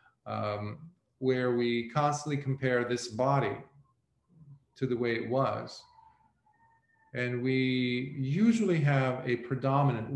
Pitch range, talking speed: 110-135 Hz, 105 wpm